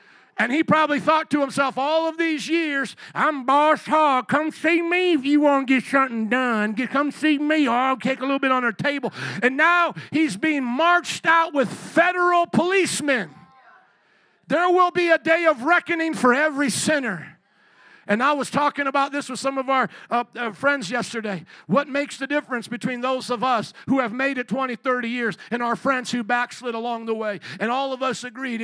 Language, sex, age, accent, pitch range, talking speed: English, male, 50-69, American, 240-315 Hz, 200 wpm